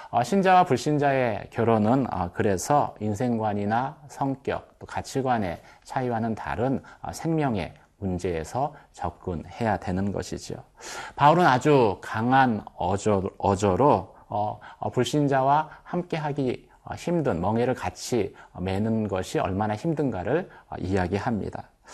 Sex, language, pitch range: male, Korean, 100-145 Hz